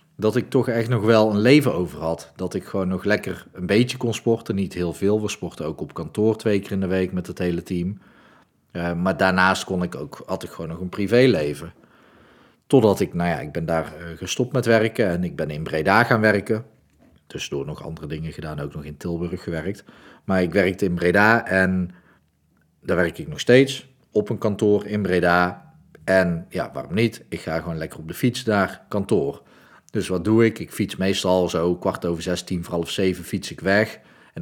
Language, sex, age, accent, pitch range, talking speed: Dutch, male, 40-59, Dutch, 85-110 Hz, 210 wpm